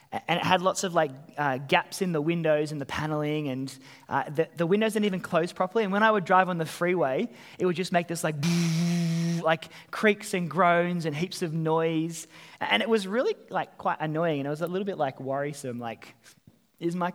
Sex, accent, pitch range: male, Australian, 150-200 Hz